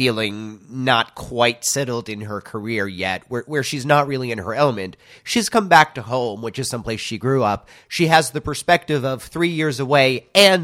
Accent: American